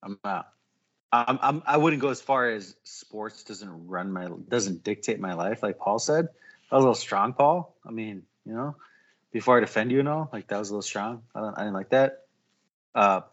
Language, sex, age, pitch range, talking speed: English, male, 30-49, 110-140 Hz, 250 wpm